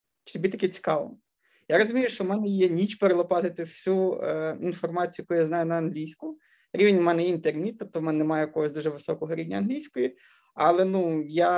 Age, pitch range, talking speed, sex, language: 20-39, 165-210 Hz, 180 wpm, male, Ukrainian